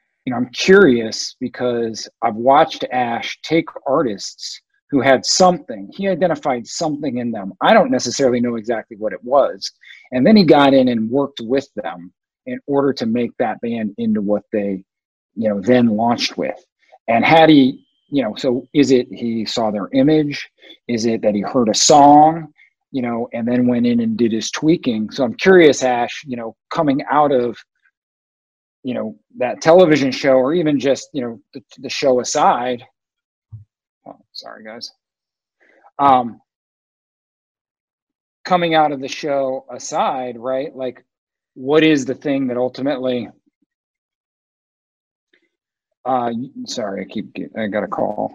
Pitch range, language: 120-160 Hz, English